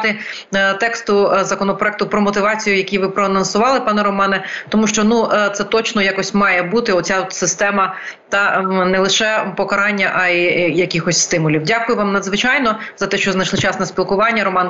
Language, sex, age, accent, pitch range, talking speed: Ukrainian, female, 30-49, native, 185-210 Hz, 160 wpm